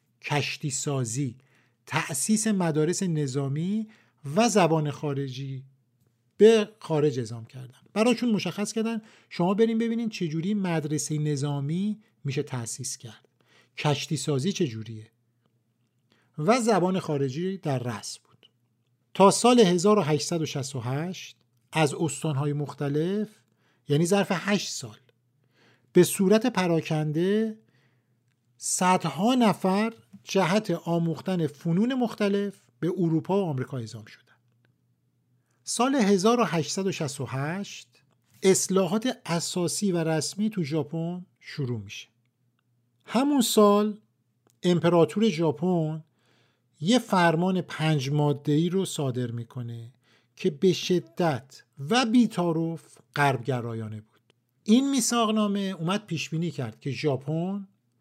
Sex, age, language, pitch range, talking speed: male, 50-69, Persian, 125-190 Hz, 95 wpm